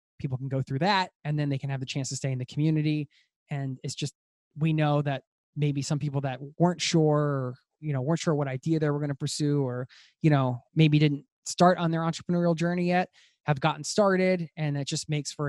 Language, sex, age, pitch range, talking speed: English, male, 20-39, 135-170 Hz, 230 wpm